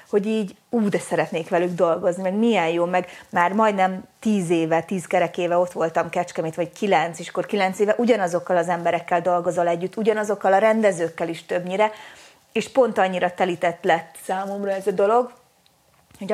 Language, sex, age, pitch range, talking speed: Hungarian, female, 30-49, 180-215 Hz, 175 wpm